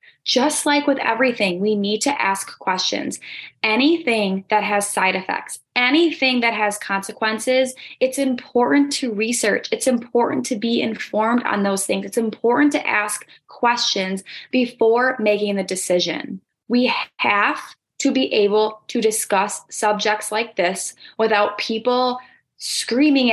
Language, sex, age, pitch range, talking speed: English, female, 20-39, 205-260 Hz, 135 wpm